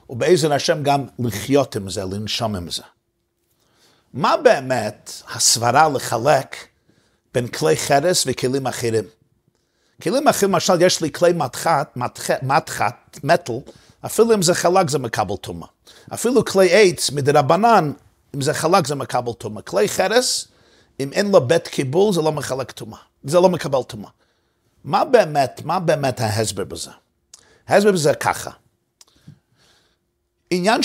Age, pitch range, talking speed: 50-69, 120-170 Hz, 130 wpm